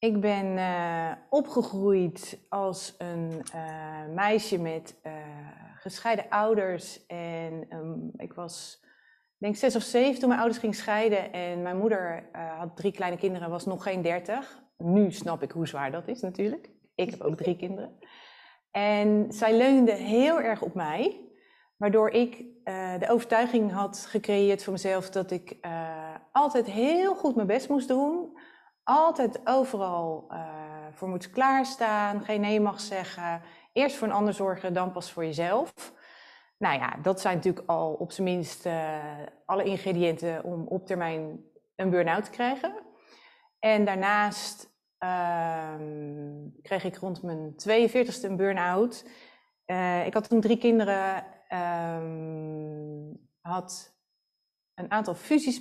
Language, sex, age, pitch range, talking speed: Dutch, female, 30-49, 170-225 Hz, 145 wpm